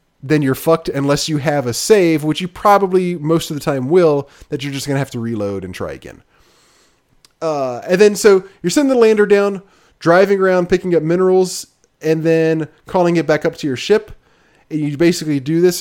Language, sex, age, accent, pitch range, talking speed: English, male, 20-39, American, 130-170 Hz, 210 wpm